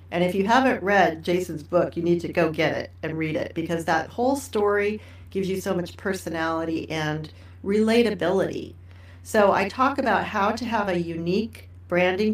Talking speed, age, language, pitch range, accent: 180 wpm, 40-59, English, 160-215 Hz, American